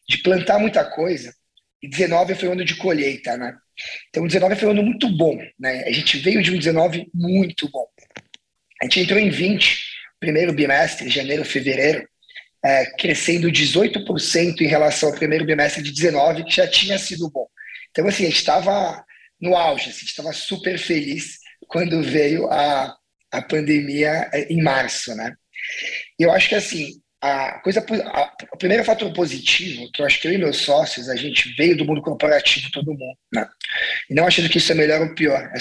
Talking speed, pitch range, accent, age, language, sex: 185 wpm, 150-195 Hz, Brazilian, 20-39, Portuguese, male